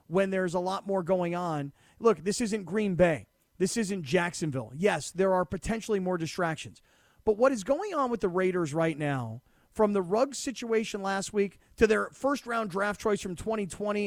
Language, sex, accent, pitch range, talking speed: English, male, American, 180-230 Hz, 190 wpm